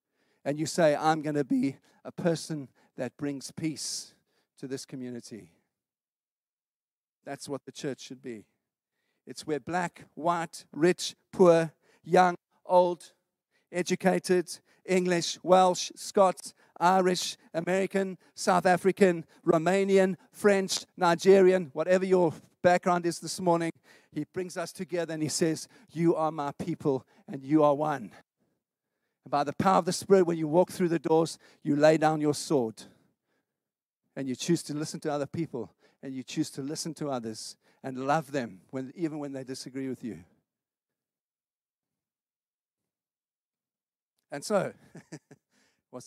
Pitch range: 145-185 Hz